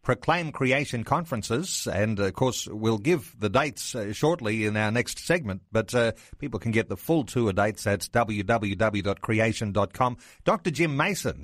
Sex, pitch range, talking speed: male, 120-160 Hz, 155 wpm